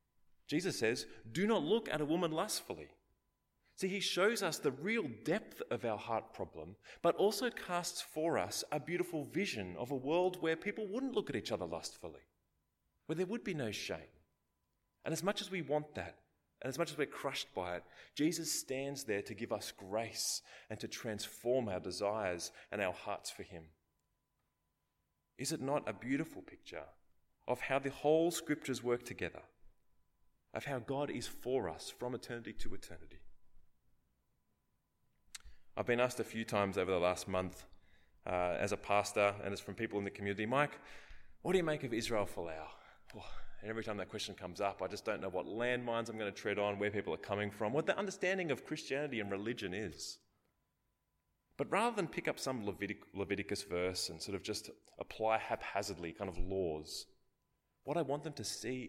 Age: 30-49